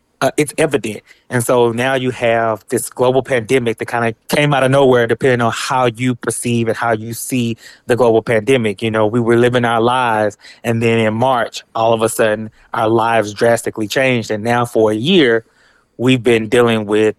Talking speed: 205 wpm